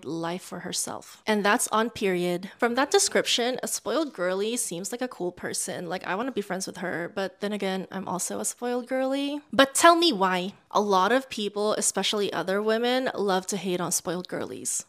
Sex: female